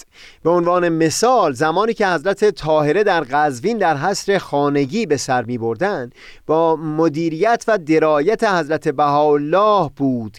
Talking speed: 135 wpm